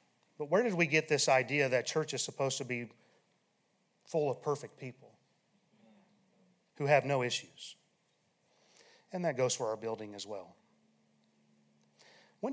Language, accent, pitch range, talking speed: English, American, 125-200 Hz, 145 wpm